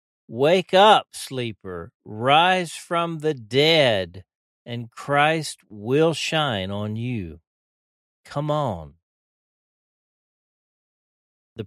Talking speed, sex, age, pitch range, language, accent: 80 wpm, male, 50-69, 100-135 Hz, English, American